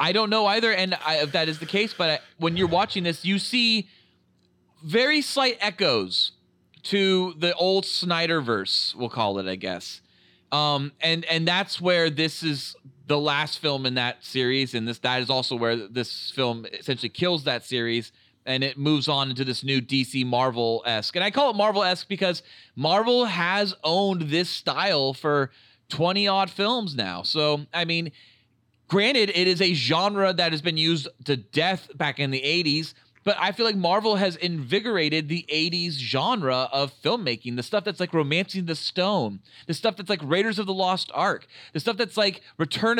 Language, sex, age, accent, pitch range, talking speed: English, male, 30-49, American, 135-195 Hz, 185 wpm